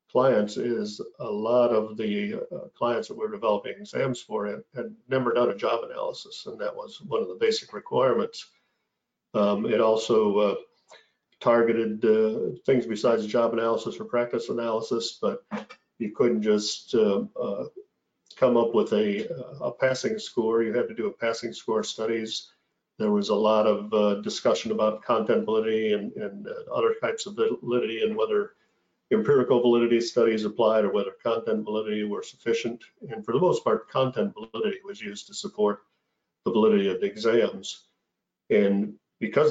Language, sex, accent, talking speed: English, male, American, 165 wpm